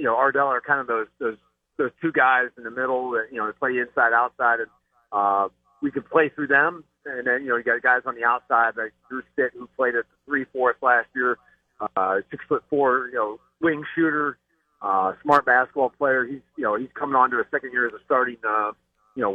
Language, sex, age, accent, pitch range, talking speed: English, male, 40-59, American, 115-150 Hz, 235 wpm